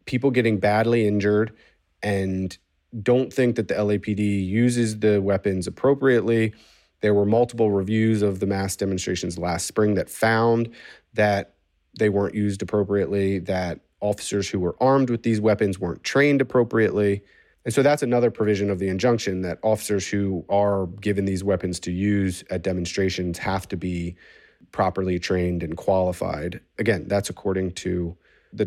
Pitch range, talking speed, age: 95-110 Hz, 155 wpm, 30-49